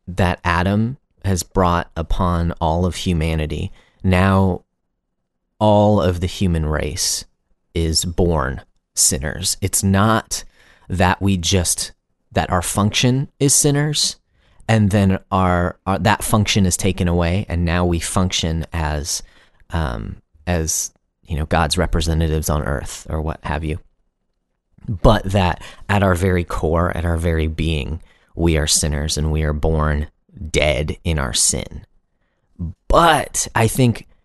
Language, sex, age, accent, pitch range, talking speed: English, male, 30-49, American, 80-100 Hz, 135 wpm